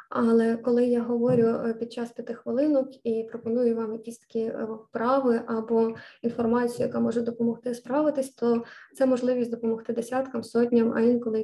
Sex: female